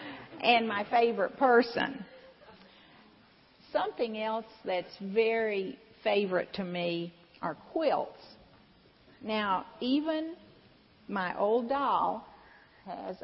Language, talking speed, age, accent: English, 85 wpm, 50-69, American